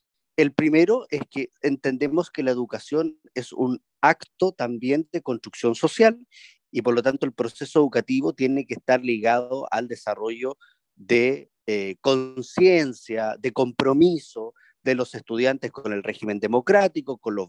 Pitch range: 120-170 Hz